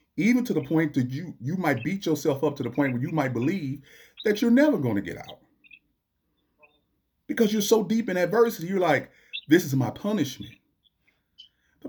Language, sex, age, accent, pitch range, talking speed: English, male, 40-59, American, 100-145 Hz, 190 wpm